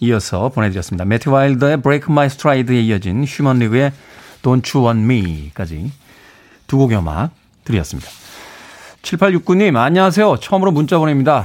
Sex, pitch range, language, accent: male, 115-155 Hz, Korean, native